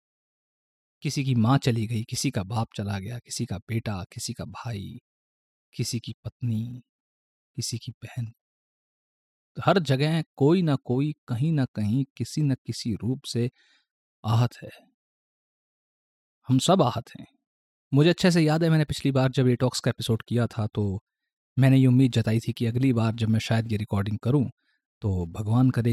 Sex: male